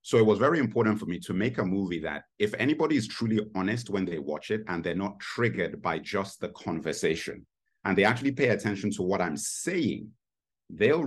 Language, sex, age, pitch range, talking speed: English, male, 50-69, 90-115 Hz, 210 wpm